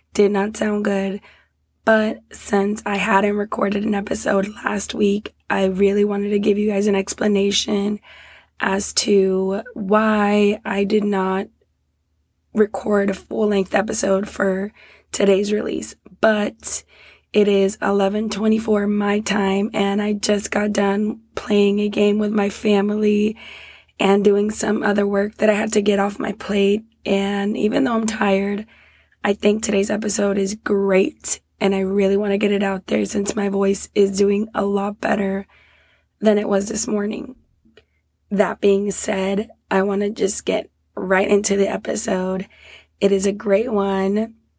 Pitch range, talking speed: 195-210 Hz, 160 wpm